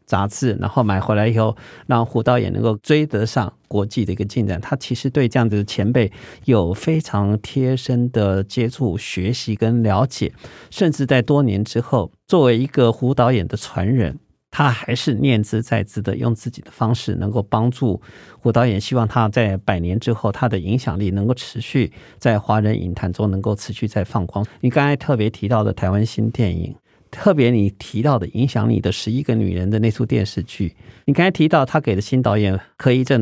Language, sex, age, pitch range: Chinese, male, 50-69, 105-130 Hz